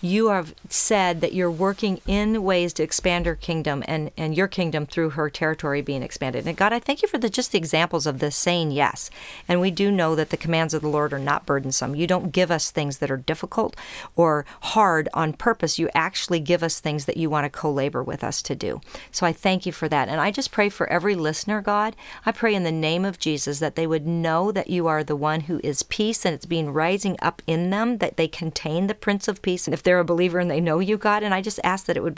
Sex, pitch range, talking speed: female, 155-195 Hz, 255 wpm